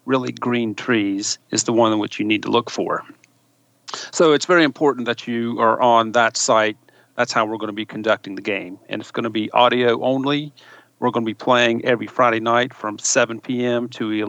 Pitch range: 115-135 Hz